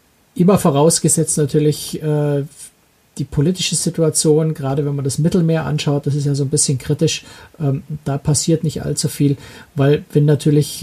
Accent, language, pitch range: German, German, 135-155 Hz